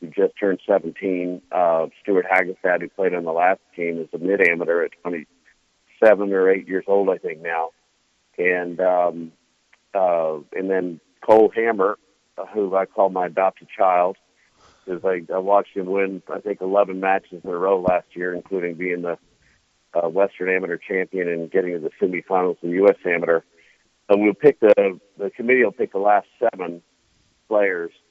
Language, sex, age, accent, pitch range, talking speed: English, male, 50-69, American, 90-110 Hz, 175 wpm